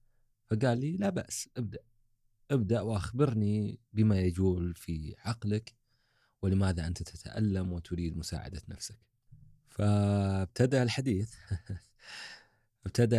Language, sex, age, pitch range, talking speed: Arabic, male, 30-49, 90-115 Hz, 90 wpm